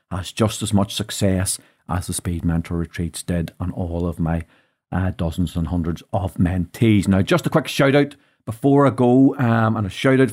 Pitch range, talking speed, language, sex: 95-125 Hz, 190 wpm, English, male